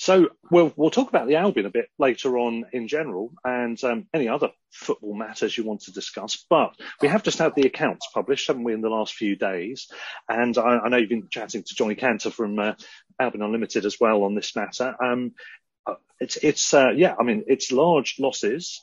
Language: English